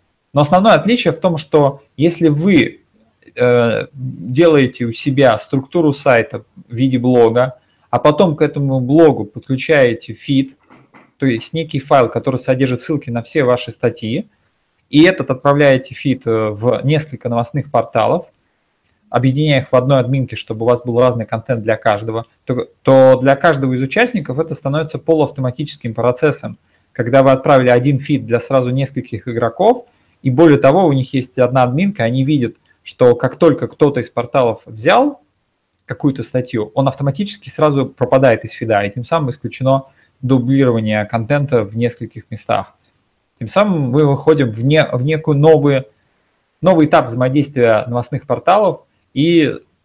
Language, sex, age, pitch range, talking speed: Russian, male, 20-39, 120-145 Hz, 150 wpm